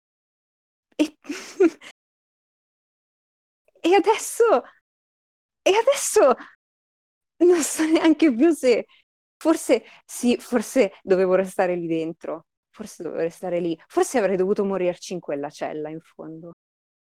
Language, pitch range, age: Italian, 195-285 Hz, 30-49